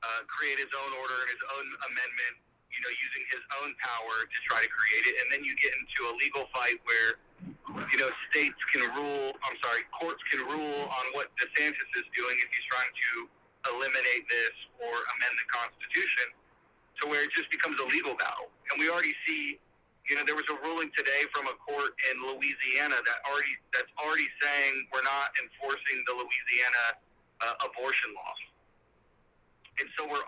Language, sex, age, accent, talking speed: English, male, 40-59, American, 185 wpm